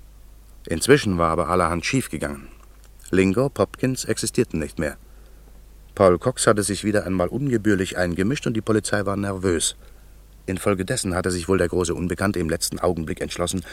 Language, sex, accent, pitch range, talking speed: German, male, German, 85-100 Hz, 150 wpm